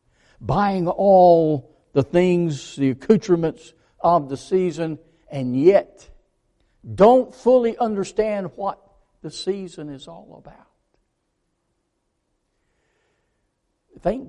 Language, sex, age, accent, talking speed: English, male, 60-79, American, 90 wpm